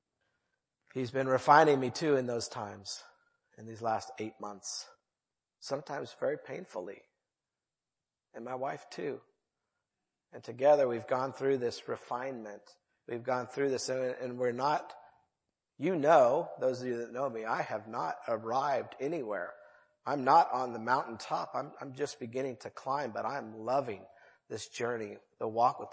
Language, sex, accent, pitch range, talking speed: English, male, American, 115-150 Hz, 155 wpm